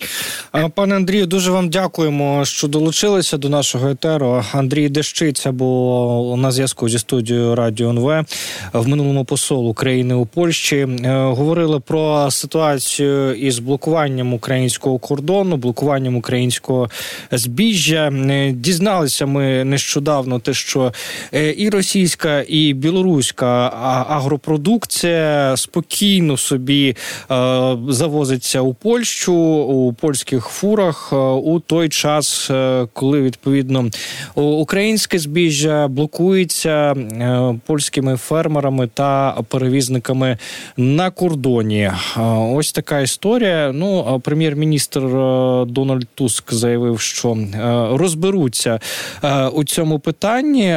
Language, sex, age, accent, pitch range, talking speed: Ukrainian, male, 20-39, native, 130-165 Hz, 95 wpm